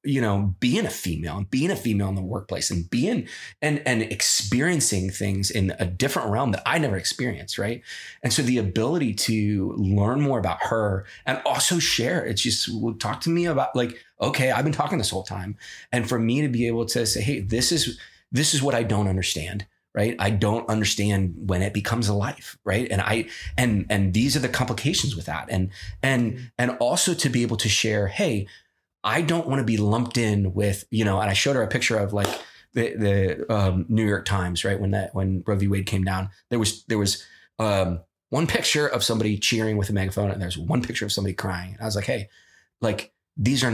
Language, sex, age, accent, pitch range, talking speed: English, male, 30-49, American, 95-120 Hz, 220 wpm